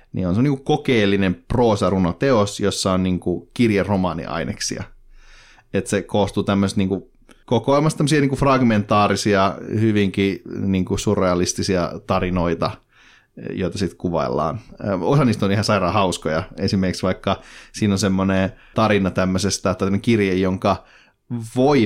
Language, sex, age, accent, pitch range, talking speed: Finnish, male, 30-49, native, 90-110 Hz, 115 wpm